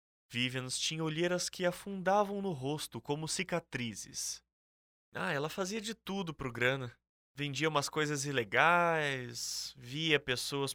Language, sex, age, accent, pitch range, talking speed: Portuguese, male, 20-39, Brazilian, 115-170 Hz, 130 wpm